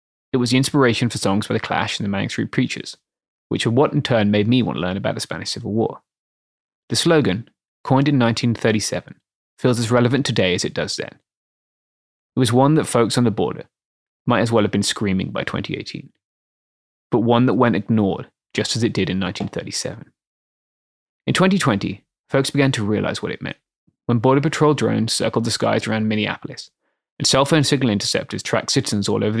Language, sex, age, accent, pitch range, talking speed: English, male, 20-39, British, 105-130 Hz, 195 wpm